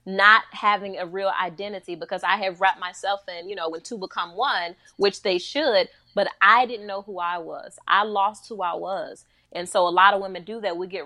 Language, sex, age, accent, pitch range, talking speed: English, female, 30-49, American, 180-230 Hz, 230 wpm